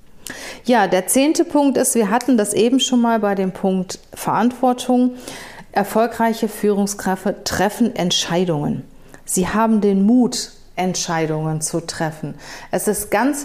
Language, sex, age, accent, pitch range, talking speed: German, female, 40-59, German, 195-235 Hz, 130 wpm